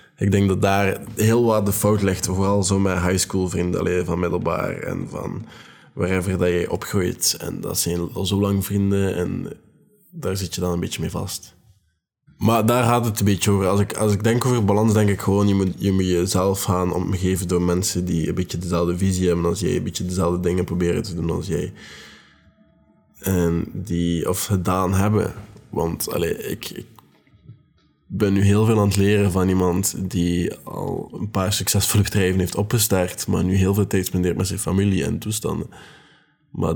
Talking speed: 195 wpm